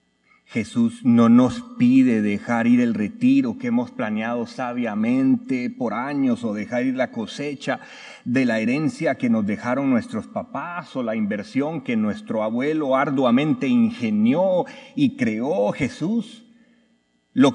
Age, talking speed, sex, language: 40-59, 135 wpm, male, English